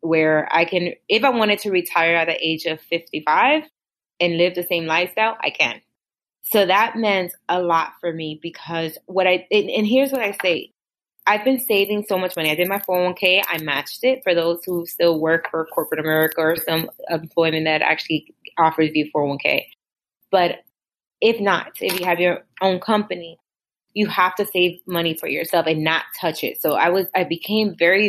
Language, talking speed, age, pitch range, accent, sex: English, 190 wpm, 20-39, 165-190 Hz, American, female